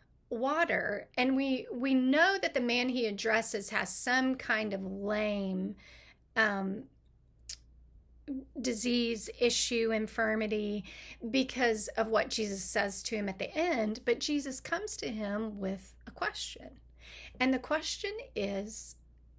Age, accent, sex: 40-59, American, female